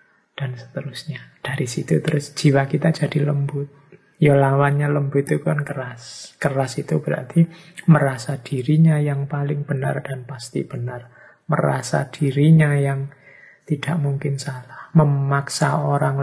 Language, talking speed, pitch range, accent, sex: Indonesian, 125 wpm, 135-160 Hz, native, male